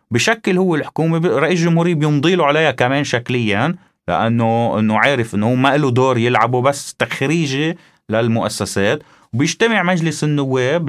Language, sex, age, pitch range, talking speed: Arabic, male, 30-49, 115-165 Hz, 140 wpm